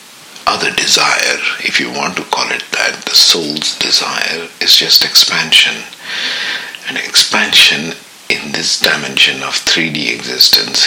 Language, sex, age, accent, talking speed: English, male, 60-79, Indian, 120 wpm